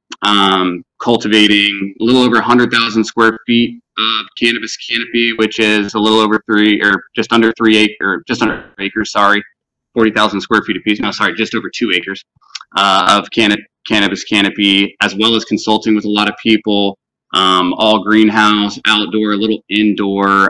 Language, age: English, 20-39